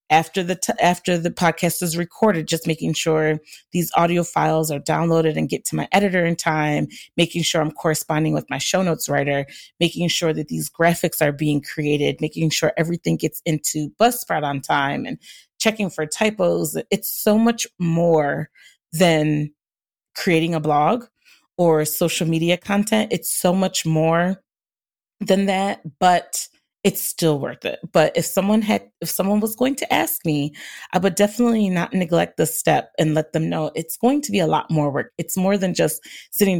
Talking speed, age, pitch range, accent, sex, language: 180 wpm, 30-49, 160-200 Hz, American, female, English